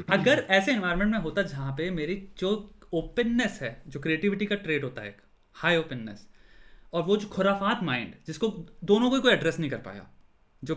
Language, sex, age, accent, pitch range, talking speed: Hindi, male, 30-49, native, 150-210 Hz, 185 wpm